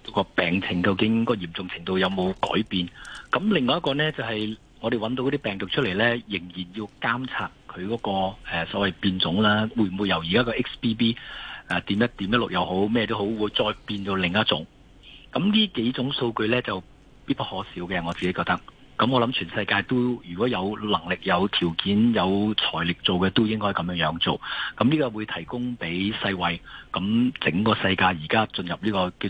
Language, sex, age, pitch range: Chinese, male, 50-69, 95-125 Hz